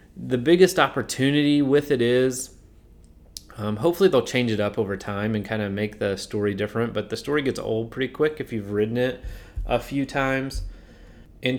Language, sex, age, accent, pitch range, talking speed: English, male, 30-49, American, 100-120 Hz, 185 wpm